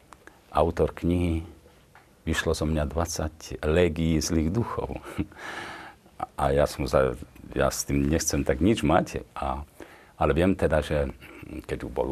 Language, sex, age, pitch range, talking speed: Slovak, male, 50-69, 75-95 Hz, 140 wpm